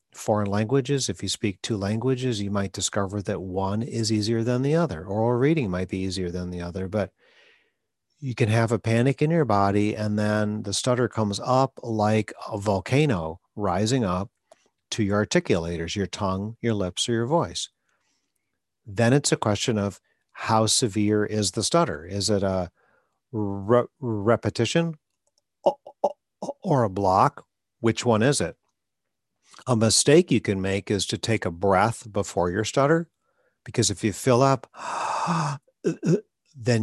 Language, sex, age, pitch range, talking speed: English, male, 40-59, 100-120 Hz, 155 wpm